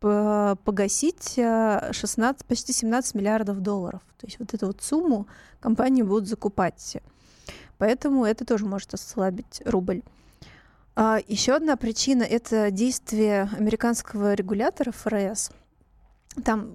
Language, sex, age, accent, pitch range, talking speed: Russian, female, 20-39, native, 205-245 Hz, 100 wpm